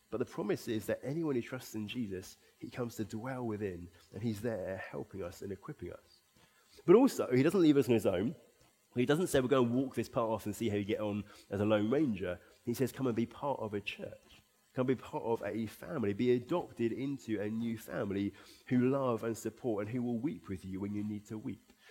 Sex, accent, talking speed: male, British, 240 wpm